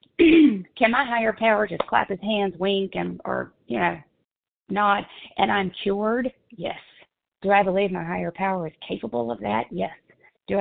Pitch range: 185-230 Hz